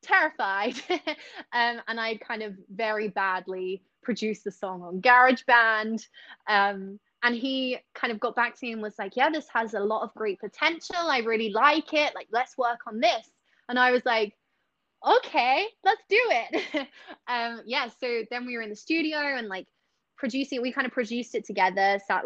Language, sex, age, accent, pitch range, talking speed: English, female, 20-39, British, 205-255 Hz, 185 wpm